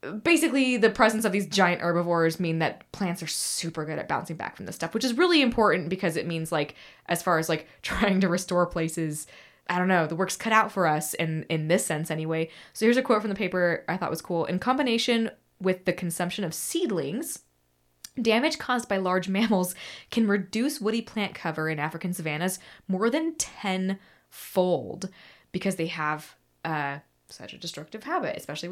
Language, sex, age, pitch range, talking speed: English, female, 20-39, 160-205 Hz, 190 wpm